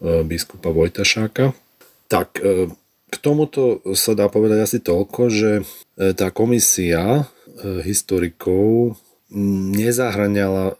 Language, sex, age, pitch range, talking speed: Slovak, male, 40-59, 90-105 Hz, 85 wpm